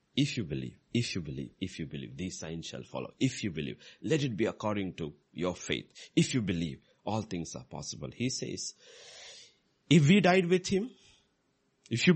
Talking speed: 190 wpm